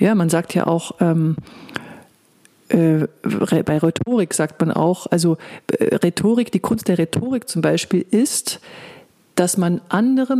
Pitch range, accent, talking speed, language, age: 175-215 Hz, German, 140 wpm, German, 40-59